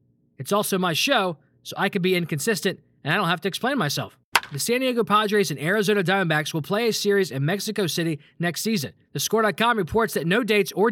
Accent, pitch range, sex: American, 150-200 Hz, male